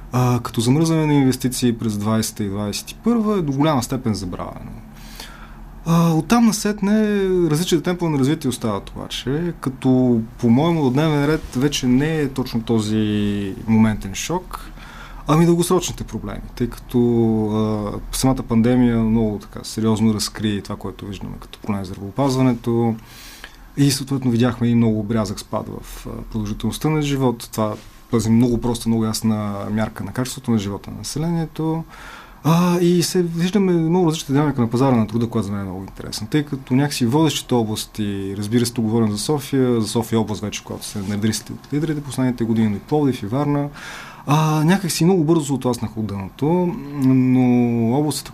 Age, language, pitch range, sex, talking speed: 20-39, Bulgarian, 110-145 Hz, male, 160 wpm